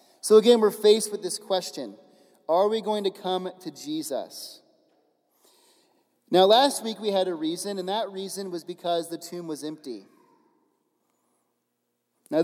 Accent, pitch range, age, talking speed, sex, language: American, 160-210 Hz, 30-49, 150 wpm, male, English